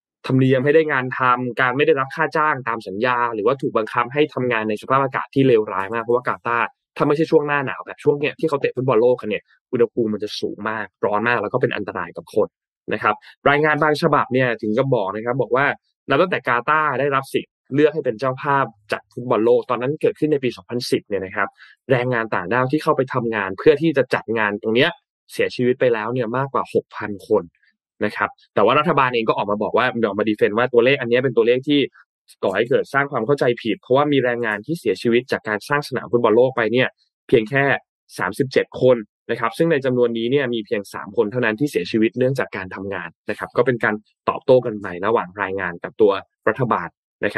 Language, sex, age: Thai, male, 20-39